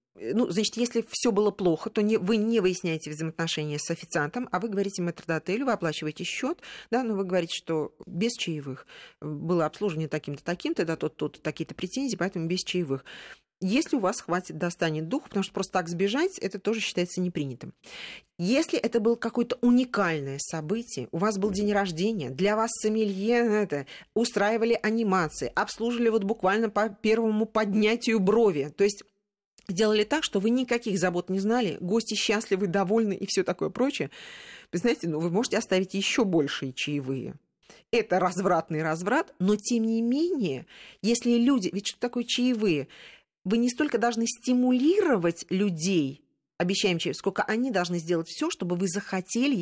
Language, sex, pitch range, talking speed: Russian, female, 170-230 Hz, 165 wpm